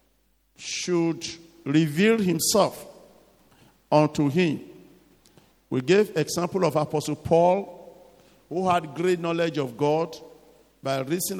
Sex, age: male, 50-69